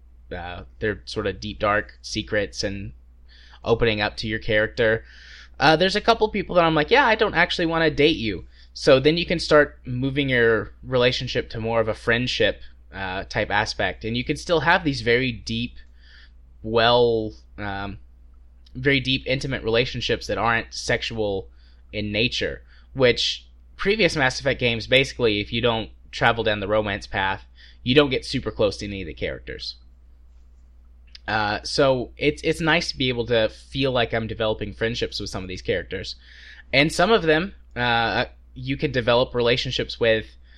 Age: 20-39